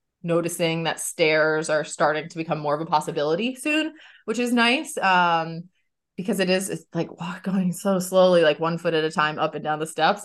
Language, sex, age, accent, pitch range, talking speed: English, female, 20-39, American, 165-210 Hz, 215 wpm